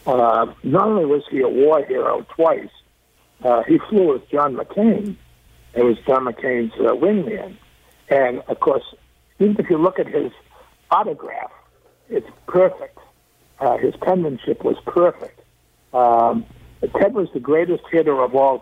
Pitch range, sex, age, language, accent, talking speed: 125-185 Hz, male, 60-79, English, American, 150 wpm